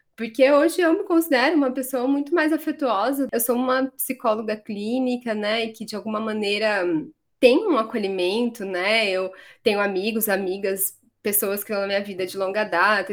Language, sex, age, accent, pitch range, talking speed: Portuguese, female, 20-39, Brazilian, 195-255 Hz, 175 wpm